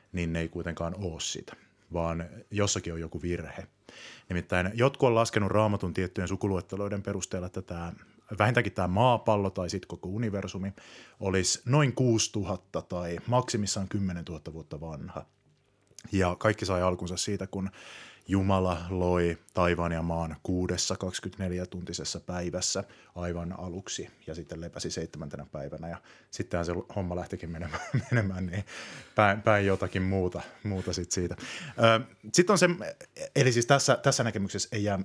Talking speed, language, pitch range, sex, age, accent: 140 wpm, Finnish, 90-105 Hz, male, 30-49, native